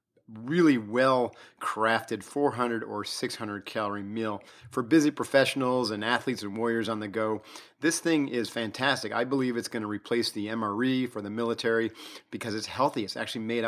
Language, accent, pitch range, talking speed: English, American, 110-130 Hz, 160 wpm